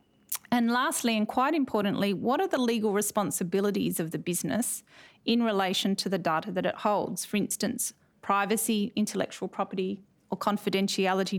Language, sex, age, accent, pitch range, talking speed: English, female, 30-49, Australian, 195-230 Hz, 150 wpm